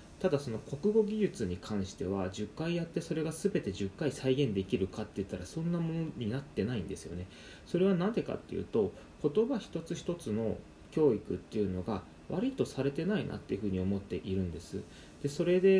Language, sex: Japanese, male